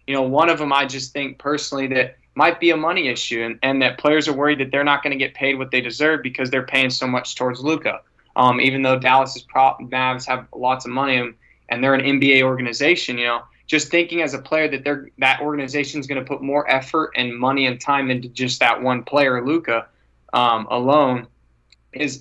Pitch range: 130-150 Hz